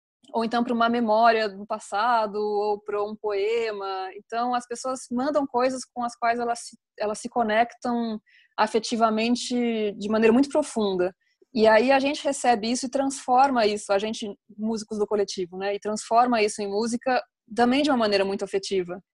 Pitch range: 200-240 Hz